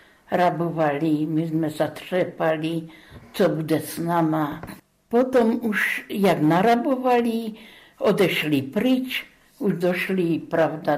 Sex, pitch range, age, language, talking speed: female, 165-200 Hz, 60-79, Czech, 95 wpm